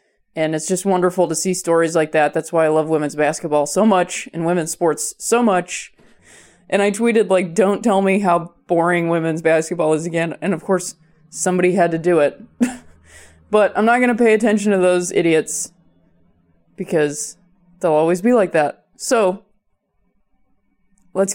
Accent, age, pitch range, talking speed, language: American, 20-39, 170-235 Hz, 170 wpm, English